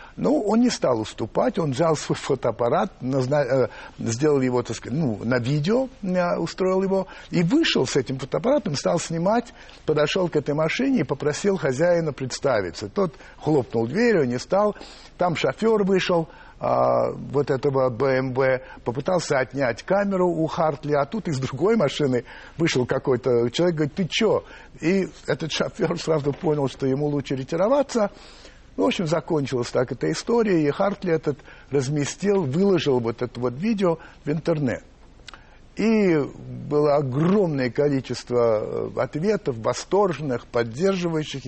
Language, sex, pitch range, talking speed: Russian, male, 135-190 Hz, 135 wpm